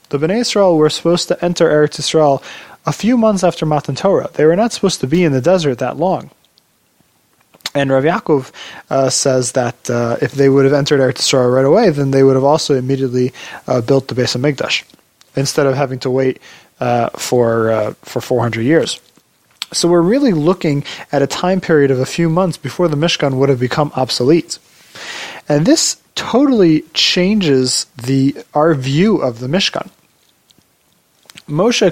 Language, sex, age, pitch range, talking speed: English, male, 20-39, 130-170 Hz, 175 wpm